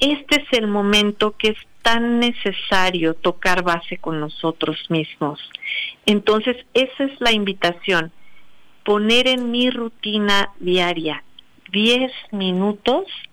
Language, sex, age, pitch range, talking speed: Spanish, female, 50-69, 170-215 Hz, 115 wpm